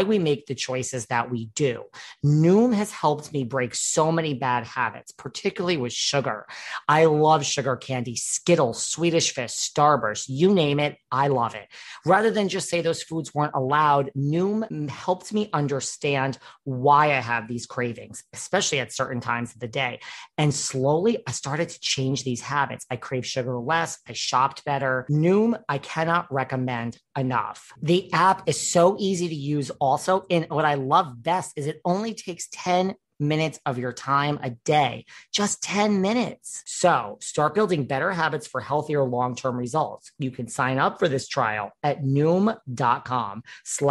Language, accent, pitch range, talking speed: English, American, 130-170 Hz, 165 wpm